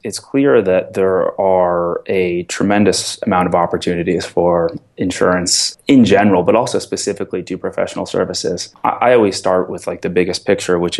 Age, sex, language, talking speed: 20-39, male, English, 160 wpm